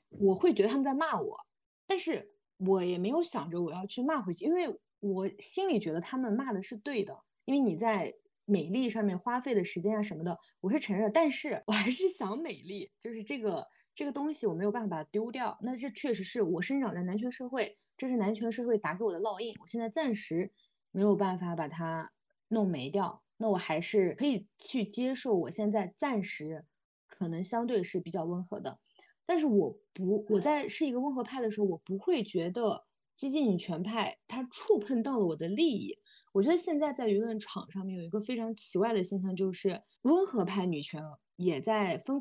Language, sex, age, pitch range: Chinese, female, 20-39, 190-255 Hz